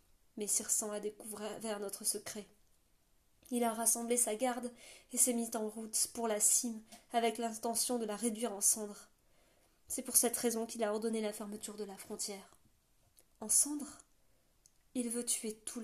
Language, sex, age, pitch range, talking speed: French, female, 20-39, 215-245 Hz, 165 wpm